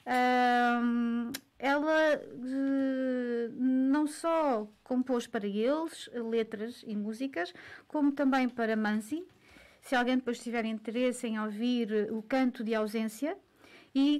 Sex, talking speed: female, 115 wpm